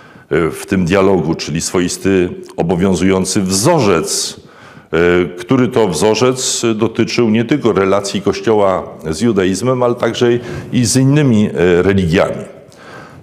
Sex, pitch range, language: male, 105-135 Hz, Polish